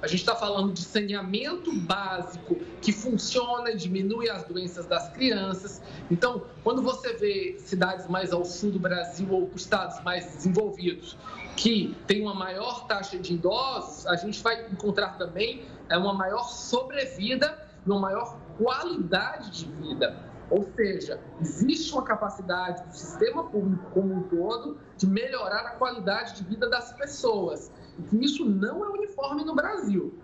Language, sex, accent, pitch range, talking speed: Portuguese, male, Brazilian, 185-235 Hz, 150 wpm